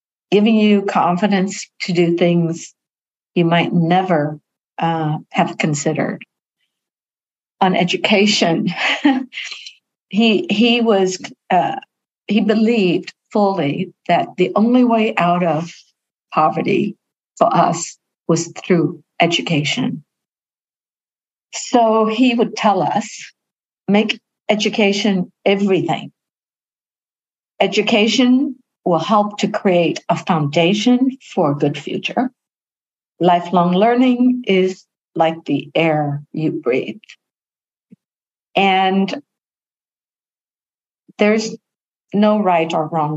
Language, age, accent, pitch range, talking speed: English, 60-79, American, 170-220 Hz, 90 wpm